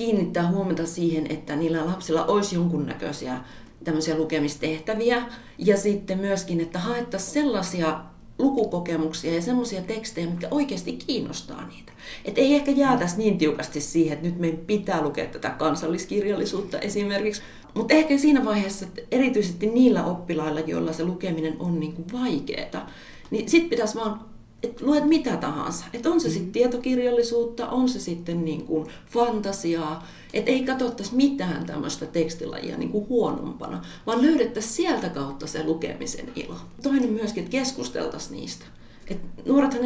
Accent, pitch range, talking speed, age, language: native, 165-240 Hz, 135 wpm, 40-59, Finnish